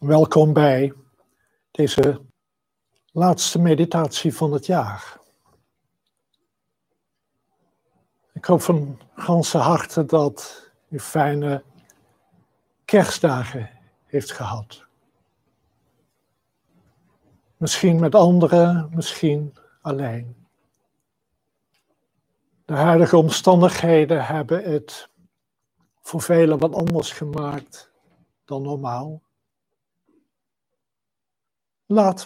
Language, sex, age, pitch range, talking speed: Dutch, male, 60-79, 145-175 Hz, 70 wpm